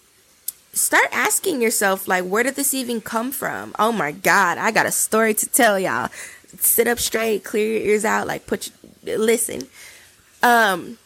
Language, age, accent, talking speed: English, 20-39, American, 170 wpm